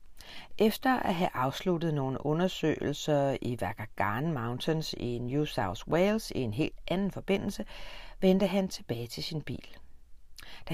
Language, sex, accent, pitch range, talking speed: Danish, female, native, 125-185 Hz, 140 wpm